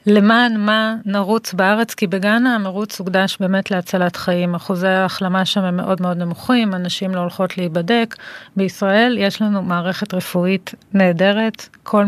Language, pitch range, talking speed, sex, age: Hebrew, 185-215 Hz, 145 wpm, female, 30-49